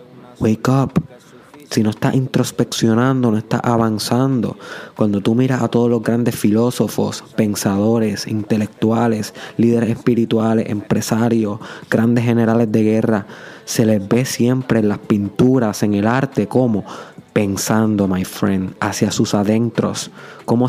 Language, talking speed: Spanish, 130 wpm